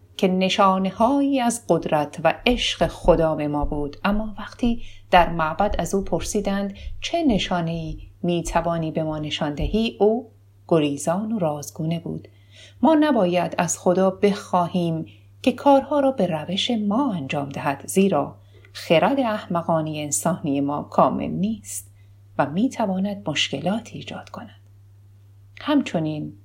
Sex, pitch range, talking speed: female, 140-205 Hz, 125 wpm